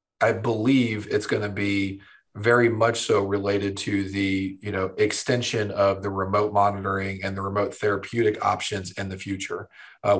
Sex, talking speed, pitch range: male, 165 wpm, 100-115 Hz